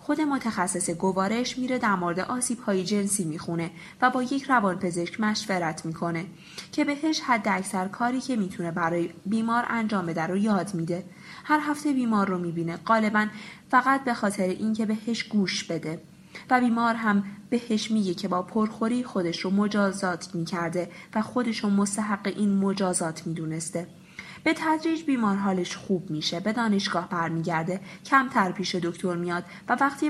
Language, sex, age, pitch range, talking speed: Persian, female, 20-39, 175-240 Hz, 155 wpm